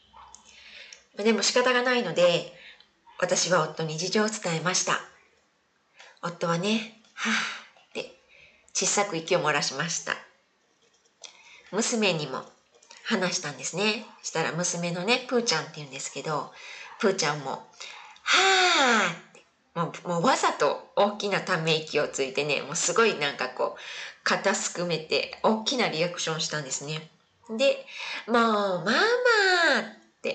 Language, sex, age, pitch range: Japanese, female, 20-39, 170-255 Hz